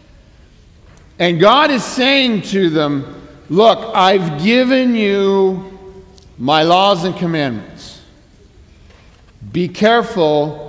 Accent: American